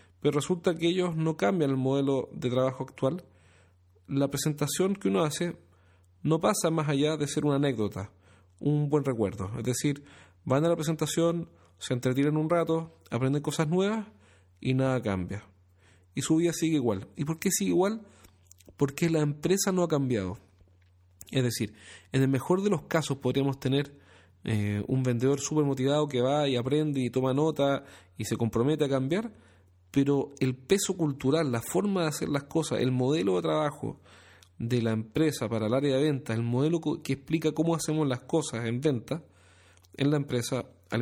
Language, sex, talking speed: Spanish, male, 180 wpm